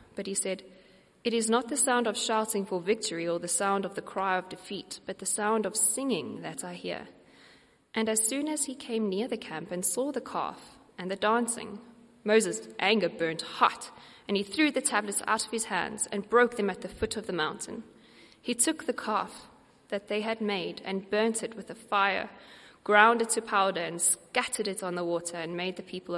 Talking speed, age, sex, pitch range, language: 215 wpm, 20-39, female, 175-225 Hz, English